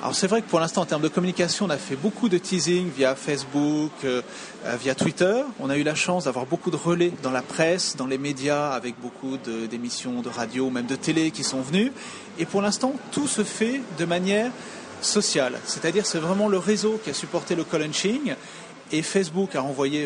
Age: 30-49